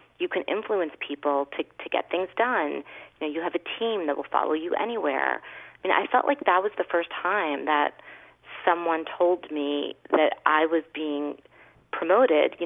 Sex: female